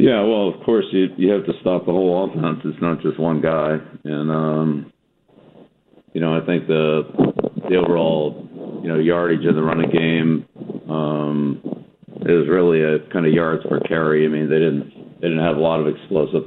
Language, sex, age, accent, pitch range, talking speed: English, male, 50-69, American, 75-80 Hz, 185 wpm